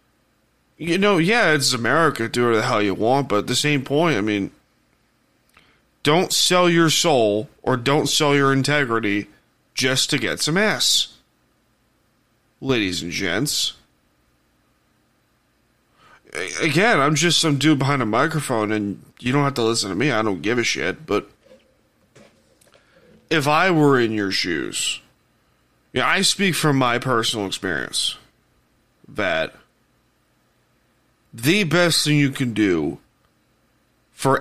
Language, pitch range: English, 110-150 Hz